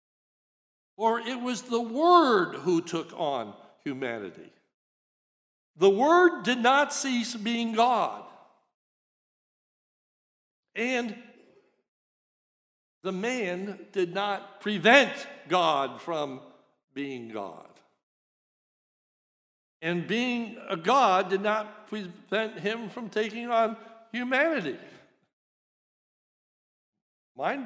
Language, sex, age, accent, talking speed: English, male, 60-79, American, 85 wpm